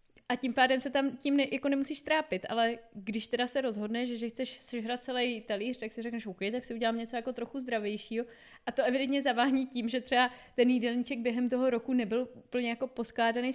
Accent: native